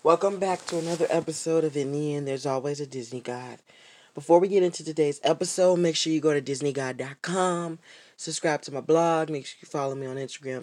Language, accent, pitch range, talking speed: English, American, 145-185 Hz, 210 wpm